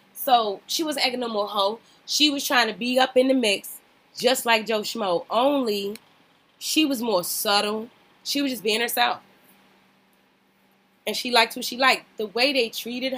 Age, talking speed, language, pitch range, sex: 20-39, 180 wpm, English, 205-260 Hz, female